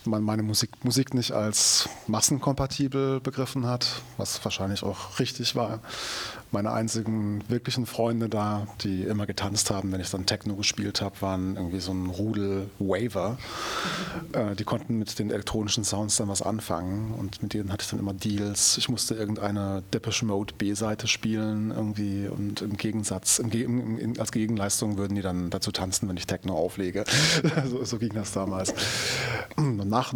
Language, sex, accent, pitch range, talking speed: German, male, German, 95-115 Hz, 170 wpm